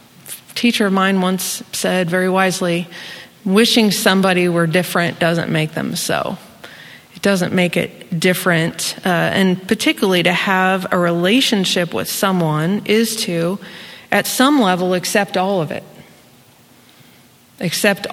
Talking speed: 130 wpm